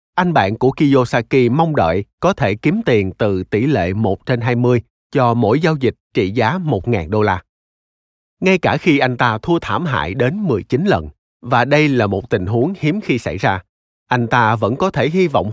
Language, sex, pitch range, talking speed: Vietnamese, male, 100-145 Hz, 205 wpm